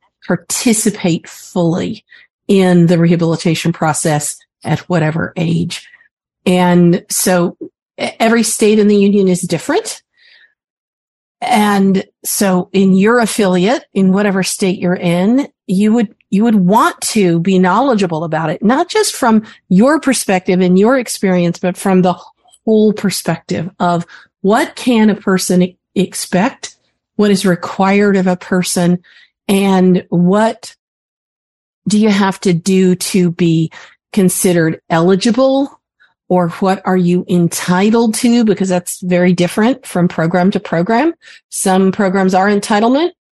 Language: English